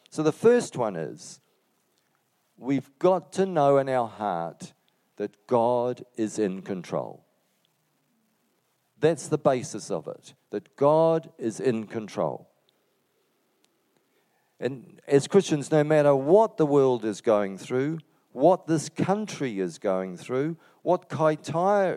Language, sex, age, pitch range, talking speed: English, male, 50-69, 120-170 Hz, 125 wpm